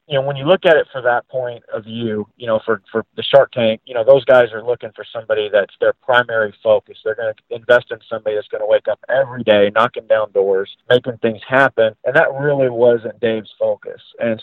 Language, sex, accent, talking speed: English, male, American, 235 wpm